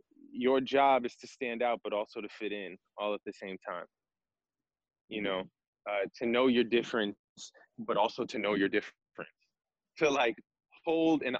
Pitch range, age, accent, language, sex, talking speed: 110-145 Hz, 20-39, American, English, male, 175 wpm